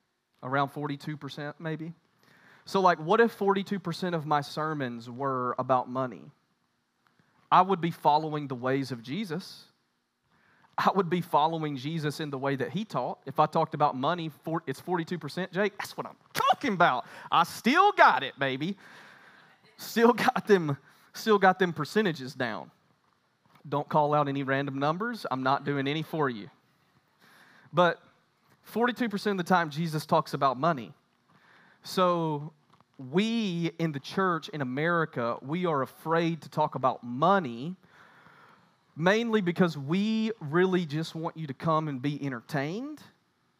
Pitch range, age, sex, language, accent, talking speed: 140-180 Hz, 30-49, male, English, American, 145 wpm